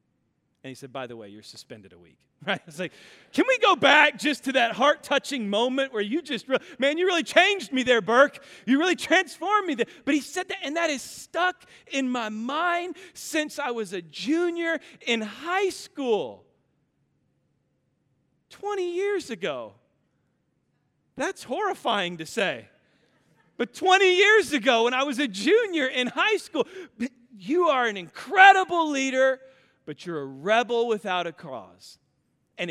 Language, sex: English, male